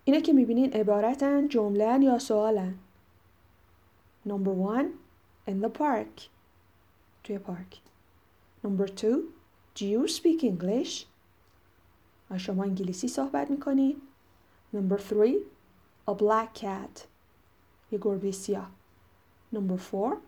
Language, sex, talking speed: Persian, female, 95 wpm